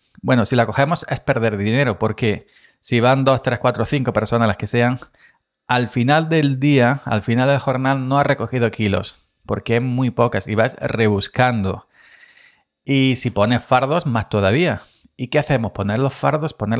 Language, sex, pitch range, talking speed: Spanish, male, 105-135 Hz, 180 wpm